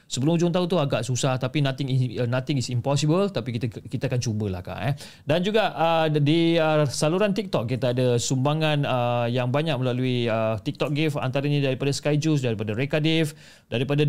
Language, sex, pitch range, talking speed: Malay, male, 120-155 Hz, 180 wpm